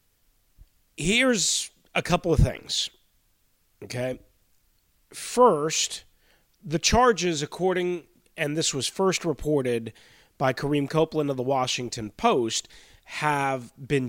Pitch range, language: 115-160 Hz, English